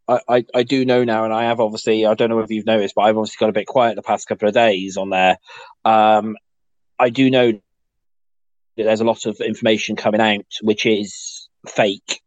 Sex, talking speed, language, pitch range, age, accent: male, 215 wpm, English, 105-115 Hz, 20-39, British